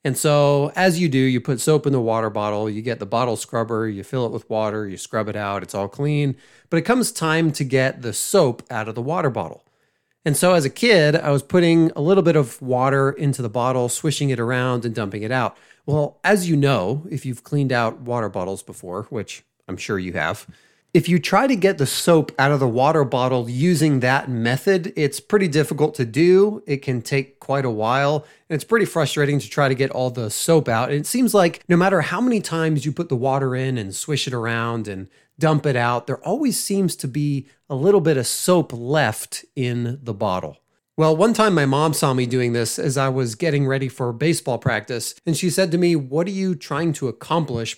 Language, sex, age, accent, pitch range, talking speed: English, male, 30-49, American, 120-160 Hz, 230 wpm